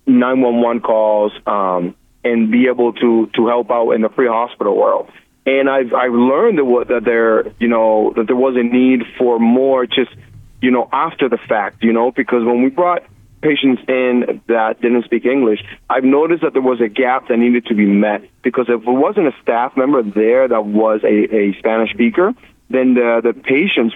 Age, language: 30-49, English